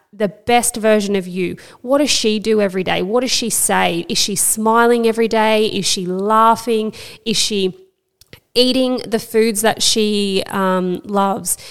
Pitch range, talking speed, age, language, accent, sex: 190-230 Hz, 165 wpm, 20-39, English, Australian, female